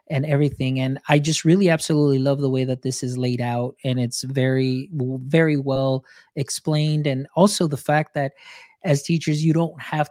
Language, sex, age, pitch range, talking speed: English, male, 20-39, 130-150 Hz, 185 wpm